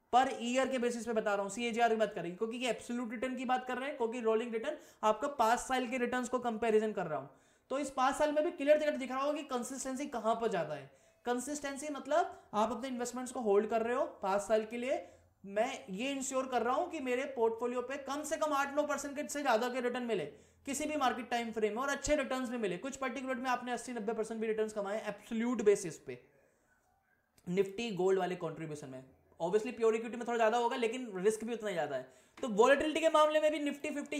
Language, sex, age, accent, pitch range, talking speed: Hindi, male, 20-39, native, 215-270 Hz, 140 wpm